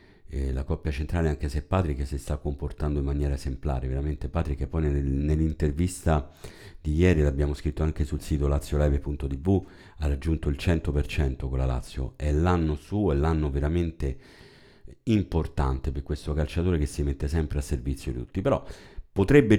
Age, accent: 50-69, native